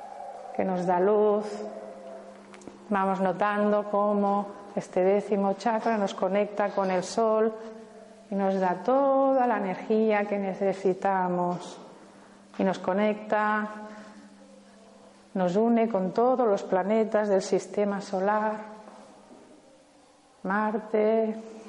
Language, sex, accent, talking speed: Spanish, female, Spanish, 100 wpm